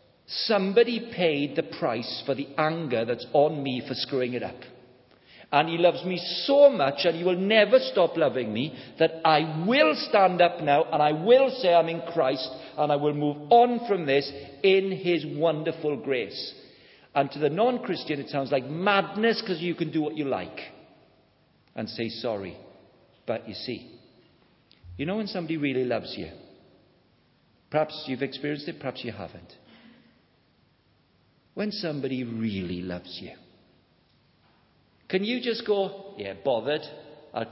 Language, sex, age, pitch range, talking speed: English, male, 50-69, 140-210 Hz, 155 wpm